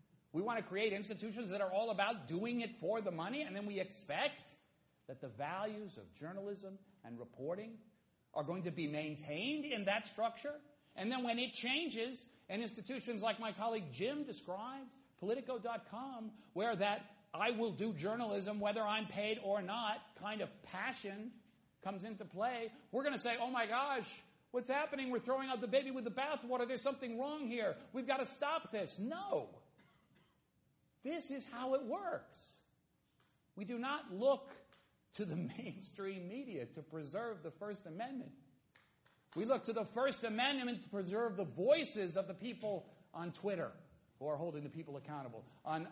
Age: 50-69